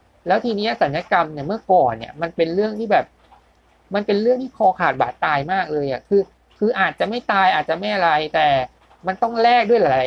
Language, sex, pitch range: Thai, male, 155-210 Hz